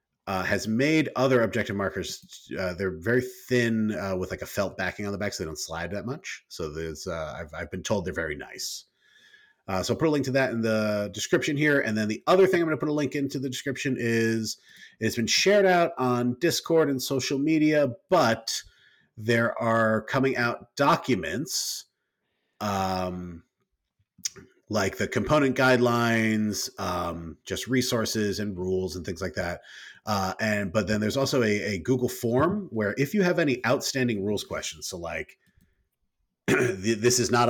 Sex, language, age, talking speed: male, English, 30-49, 180 wpm